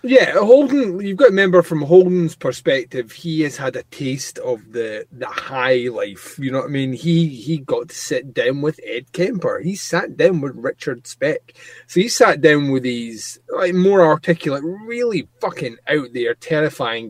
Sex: male